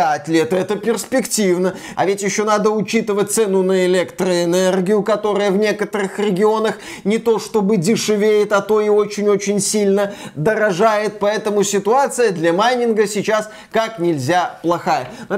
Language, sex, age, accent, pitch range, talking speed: Russian, male, 20-39, native, 180-230 Hz, 135 wpm